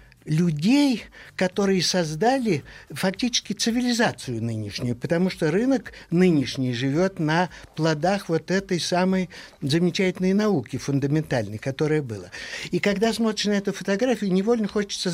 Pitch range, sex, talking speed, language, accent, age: 150-200 Hz, male, 115 wpm, Russian, native, 60-79